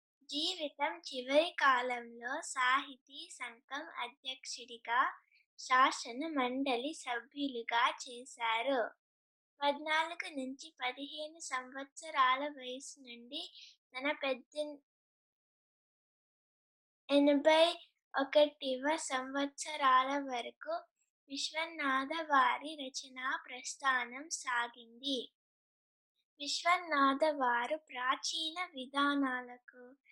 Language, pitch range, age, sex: Telugu, 255-310 Hz, 20-39, female